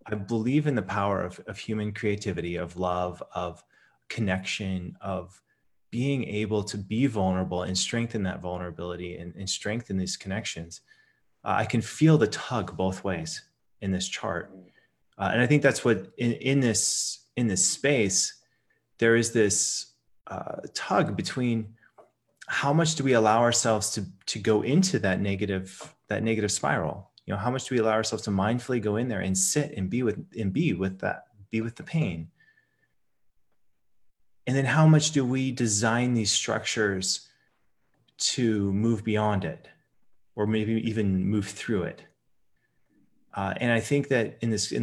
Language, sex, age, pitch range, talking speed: English, male, 30-49, 95-120 Hz, 165 wpm